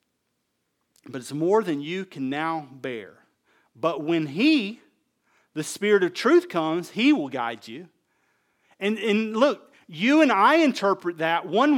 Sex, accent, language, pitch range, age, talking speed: male, American, English, 190-265 Hz, 40-59, 150 wpm